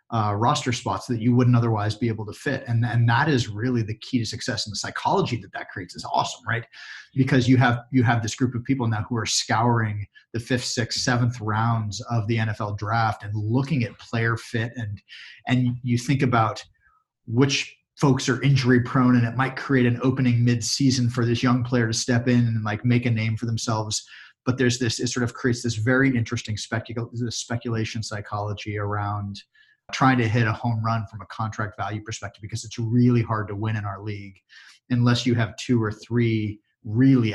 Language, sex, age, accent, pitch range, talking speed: English, male, 30-49, American, 110-125 Hz, 205 wpm